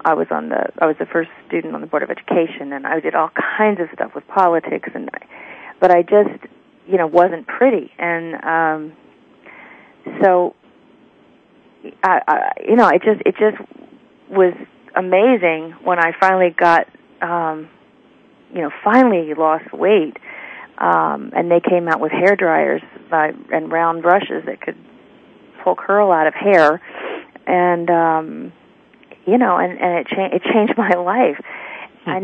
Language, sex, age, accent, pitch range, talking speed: English, female, 40-59, American, 160-195 Hz, 160 wpm